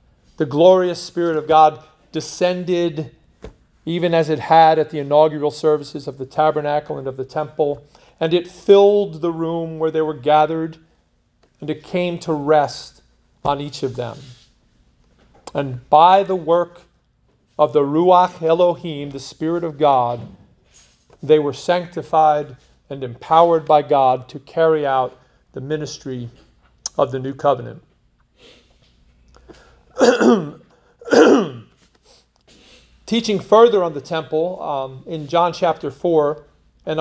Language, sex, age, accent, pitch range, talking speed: English, male, 40-59, American, 140-175 Hz, 125 wpm